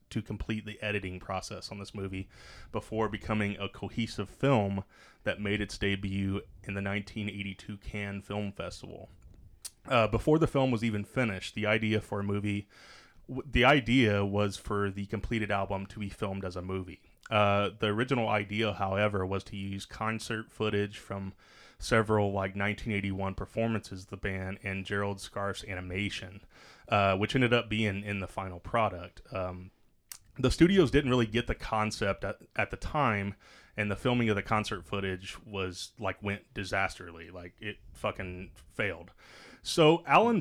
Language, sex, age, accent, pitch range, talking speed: English, male, 30-49, American, 95-110 Hz, 160 wpm